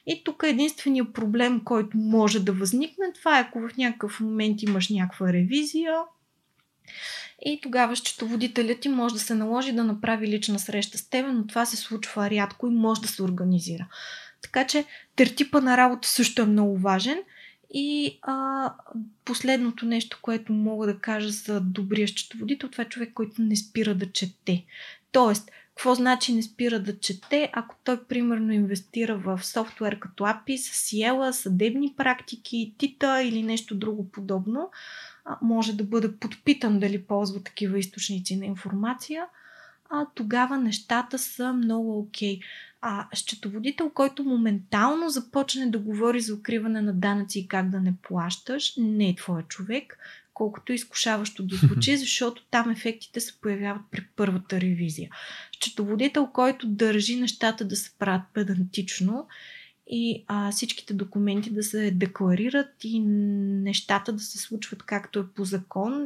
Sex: female